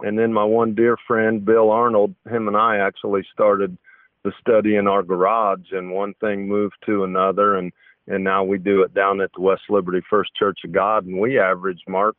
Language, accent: English, American